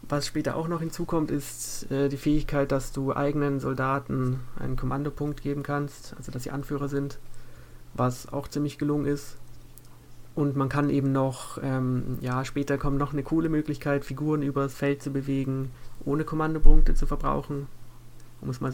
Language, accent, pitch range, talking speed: German, German, 125-145 Hz, 170 wpm